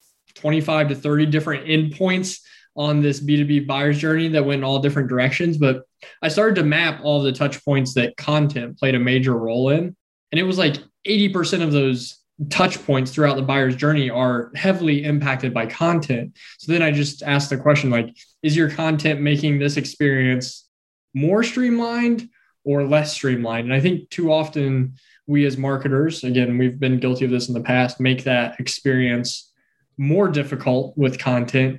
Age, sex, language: 10-29, male, English